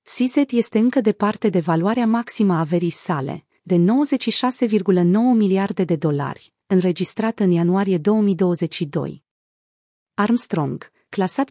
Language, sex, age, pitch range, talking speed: Romanian, female, 30-49, 180-235 Hz, 110 wpm